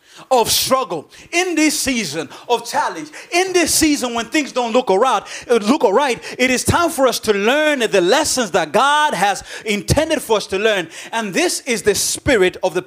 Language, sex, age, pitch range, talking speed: English, male, 30-49, 190-275 Hz, 195 wpm